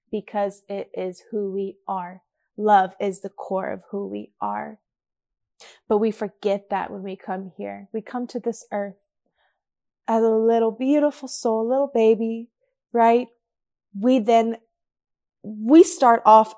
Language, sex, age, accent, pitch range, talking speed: English, female, 20-39, American, 195-240 Hz, 145 wpm